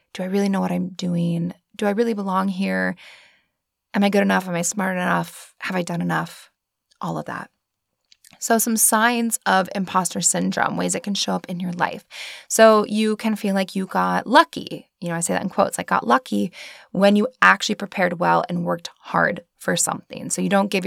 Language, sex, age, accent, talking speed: English, female, 20-39, American, 210 wpm